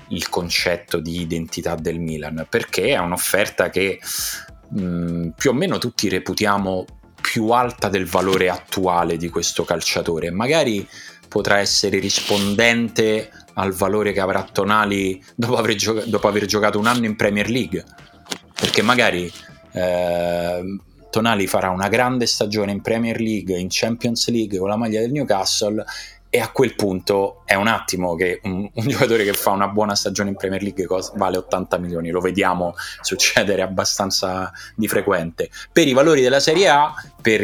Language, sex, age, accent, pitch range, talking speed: Italian, male, 30-49, native, 90-110 Hz, 155 wpm